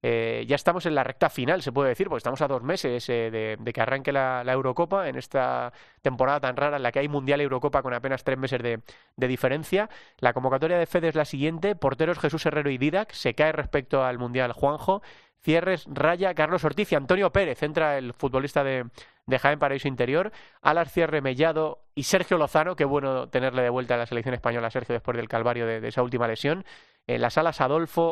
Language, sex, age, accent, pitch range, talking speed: Spanish, male, 30-49, Spanish, 125-165 Hz, 220 wpm